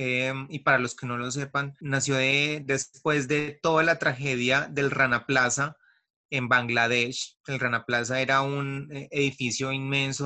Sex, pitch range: male, 125-140 Hz